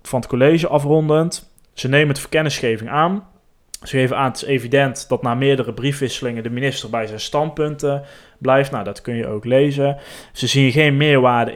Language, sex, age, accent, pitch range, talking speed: Dutch, male, 20-39, Dutch, 115-135 Hz, 185 wpm